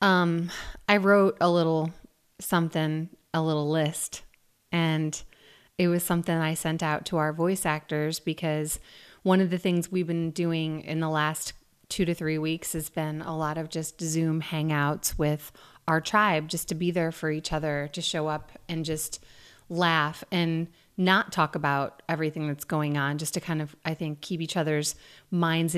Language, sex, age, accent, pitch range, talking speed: English, female, 30-49, American, 155-180 Hz, 180 wpm